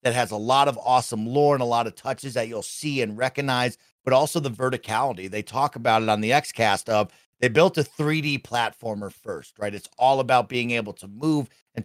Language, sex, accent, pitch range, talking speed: English, male, American, 115-140 Hz, 230 wpm